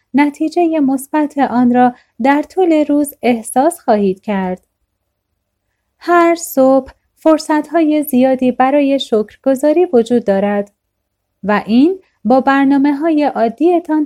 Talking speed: 100 wpm